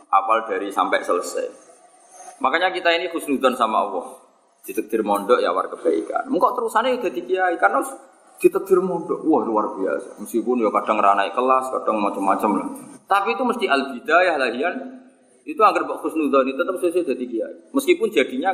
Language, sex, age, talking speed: Malay, male, 30-49, 155 wpm